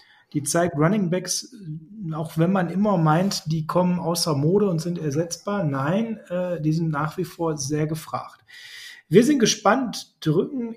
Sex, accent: male, German